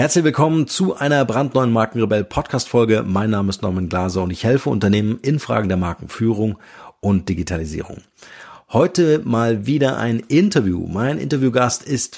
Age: 40-59